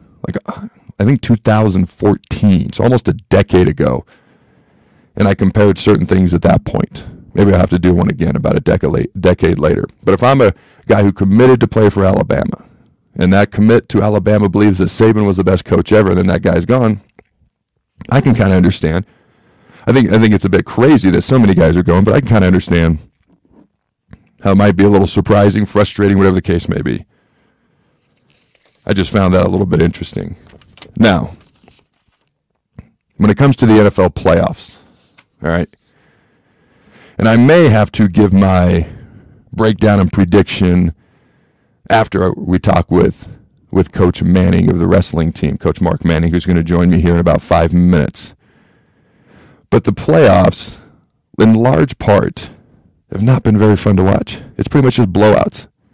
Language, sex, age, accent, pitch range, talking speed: English, male, 40-59, American, 90-110 Hz, 175 wpm